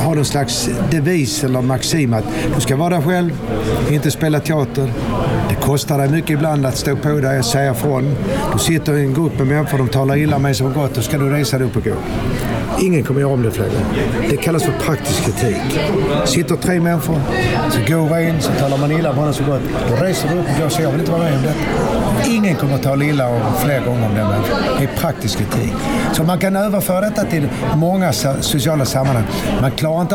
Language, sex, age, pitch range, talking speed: Swedish, male, 60-79, 120-160 Hz, 225 wpm